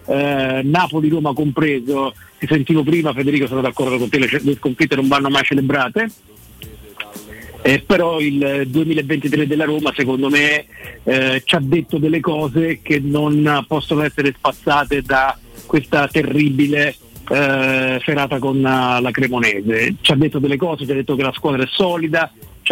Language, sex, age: Italian, male, 50-69